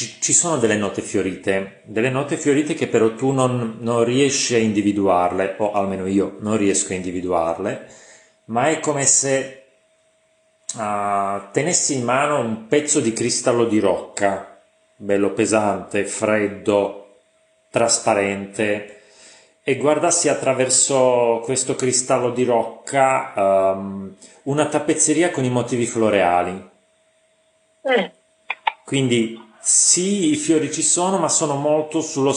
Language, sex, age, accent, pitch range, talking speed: Italian, male, 30-49, native, 110-150 Hz, 115 wpm